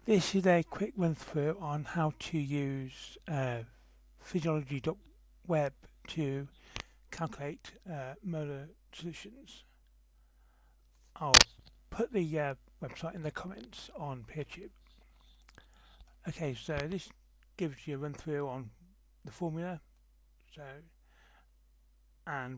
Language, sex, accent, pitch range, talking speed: English, male, British, 130-170 Hz, 100 wpm